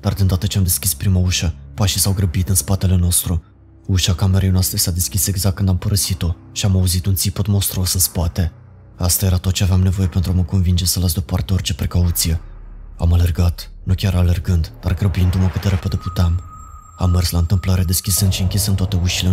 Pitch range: 90-100 Hz